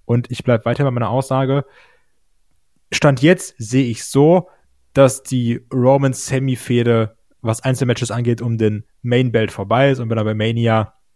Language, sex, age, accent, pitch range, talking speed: German, male, 10-29, German, 110-135 Hz, 155 wpm